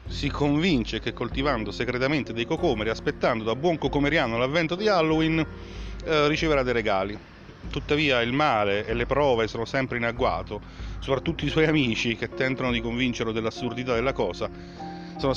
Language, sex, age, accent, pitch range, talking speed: Italian, male, 30-49, native, 110-130 Hz, 155 wpm